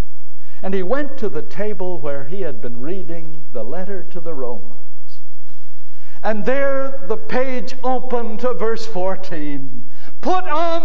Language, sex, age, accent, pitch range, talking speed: English, male, 60-79, American, 150-230 Hz, 145 wpm